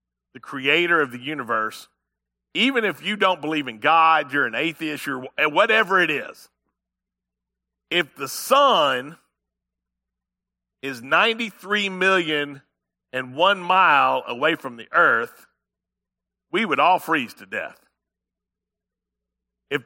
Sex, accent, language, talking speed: male, American, English, 120 wpm